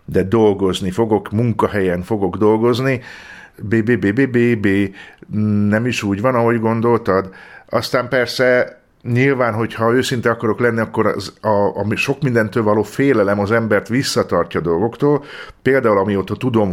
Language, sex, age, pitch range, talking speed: Hungarian, male, 50-69, 100-120 Hz, 135 wpm